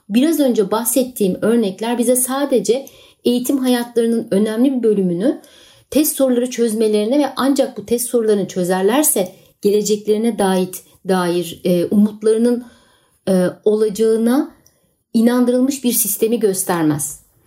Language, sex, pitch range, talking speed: Turkish, female, 195-255 Hz, 100 wpm